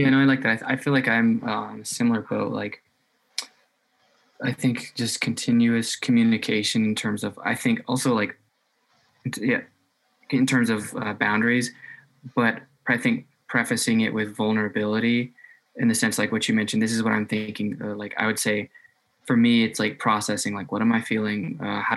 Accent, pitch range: American, 110-160 Hz